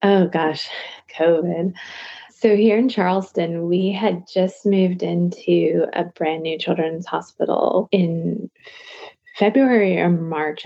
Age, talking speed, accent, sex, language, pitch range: 20-39, 120 wpm, American, female, English, 160-195 Hz